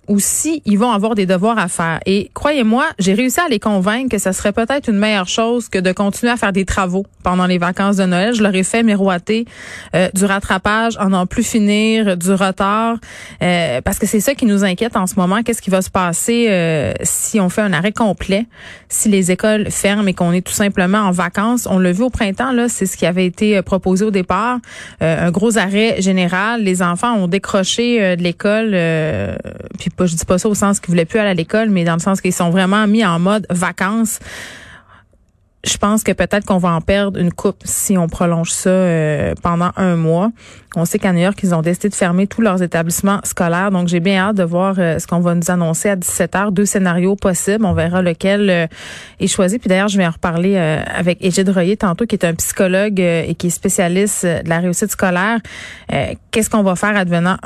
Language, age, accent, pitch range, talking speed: French, 30-49, Canadian, 180-215 Hz, 230 wpm